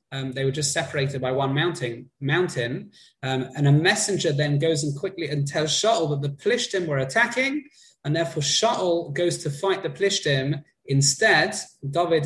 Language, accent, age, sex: English, British, 20-39, male